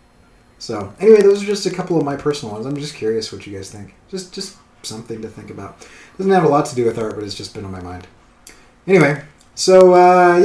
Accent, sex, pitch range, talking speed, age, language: American, male, 115-155 Hz, 245 wpm, 30-49, English